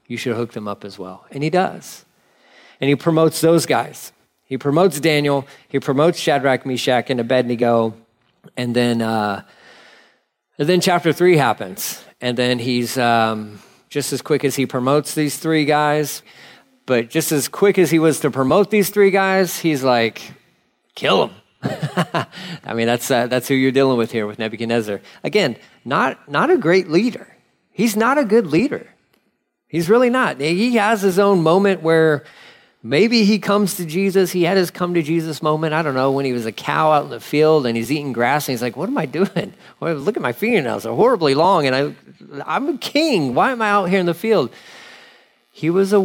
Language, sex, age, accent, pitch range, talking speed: English, male, 40-59, American, 125-185 Hz, 195 wpm